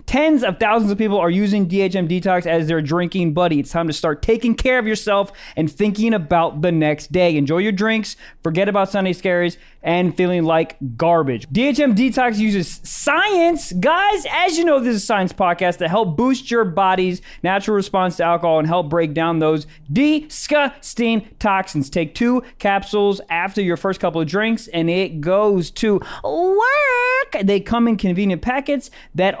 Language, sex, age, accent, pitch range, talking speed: English, male, 20-39, American, 175-235 Hz, 180 wpm